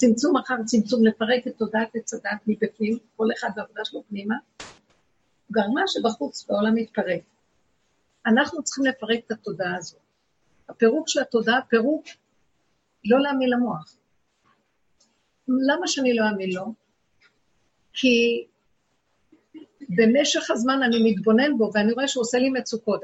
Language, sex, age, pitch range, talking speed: Hebrew, female, 50-69, 215-260 Hz, 125 wpm